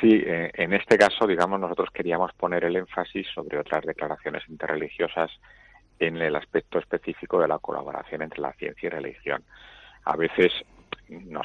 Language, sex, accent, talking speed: Spanish, male, Spanish, 155 wpm